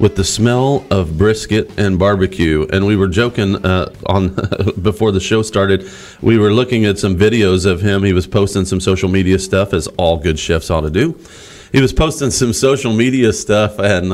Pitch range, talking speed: 95-125 Hz, 200 wpm